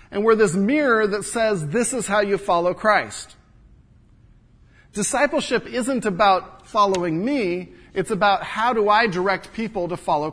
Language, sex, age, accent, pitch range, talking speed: English, male, 40-59, American, 115-190 Hz, 150 wpm